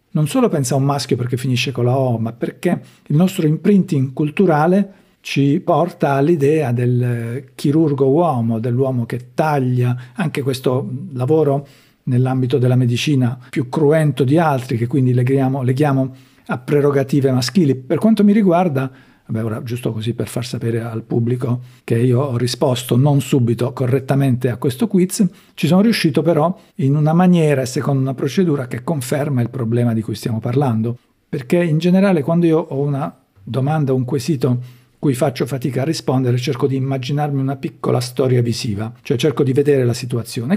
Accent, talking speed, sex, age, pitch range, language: native, 165 wpm, male, 50-69, 125-155 Hz, Italian